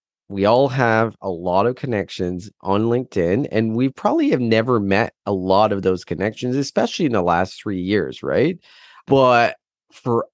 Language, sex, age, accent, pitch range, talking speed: English, male, 30-49, American, 95-130 Hz, 170 wpm